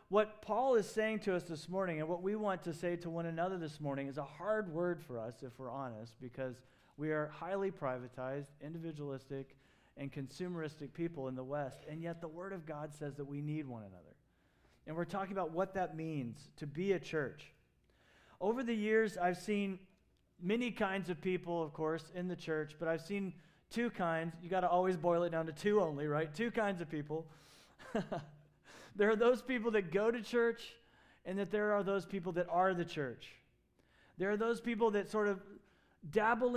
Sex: male